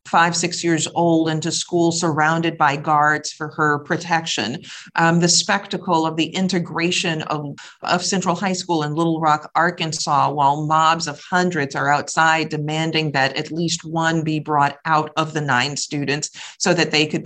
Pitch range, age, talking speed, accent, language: 155-185 Hz, 40-59, 170 wpm, American, English